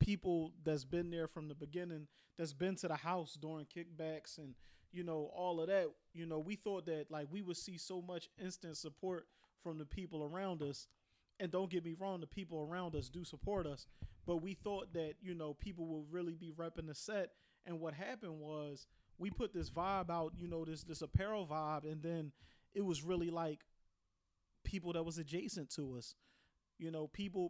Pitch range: 155-180 Hz